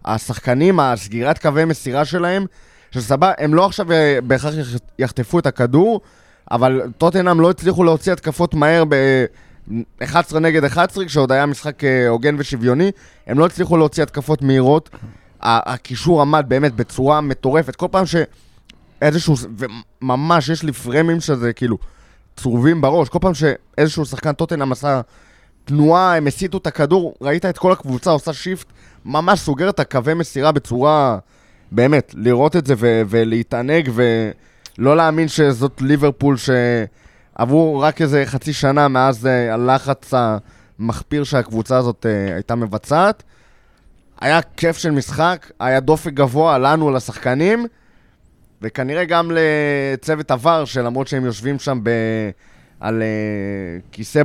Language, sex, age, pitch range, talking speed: Hebrew, male, 20-39, 120-160 Hz, 125 wpm